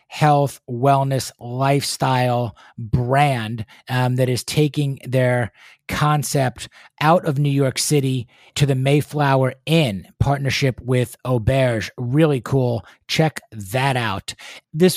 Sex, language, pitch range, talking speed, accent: male, English, 130-160 Hz, 110 wpm, American